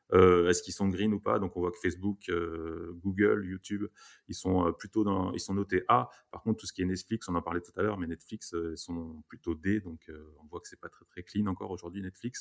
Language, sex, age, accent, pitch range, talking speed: French, male, 30-49, French, 85-105 Hz, 280 wpm